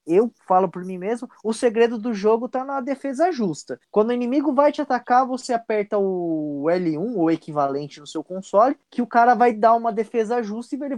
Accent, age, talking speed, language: Brazilian, 20-39, 210 wpm, Portuguese